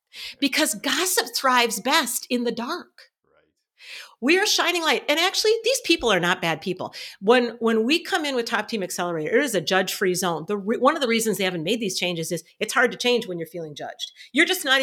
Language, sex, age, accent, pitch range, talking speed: English, female, 50-69, American, 190-270 Hz, 225 wpm